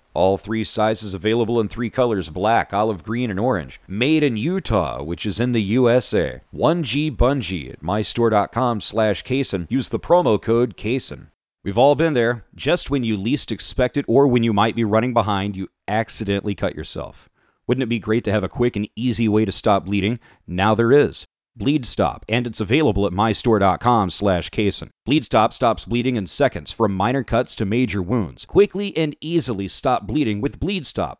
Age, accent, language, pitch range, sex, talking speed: 40-59, American, English, 100-125 Hz, male, 180 wpm